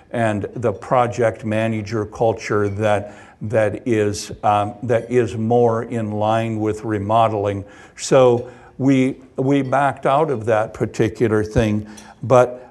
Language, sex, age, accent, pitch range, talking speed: English, male, 60-79, American, 105-125 Hz, 125 wpm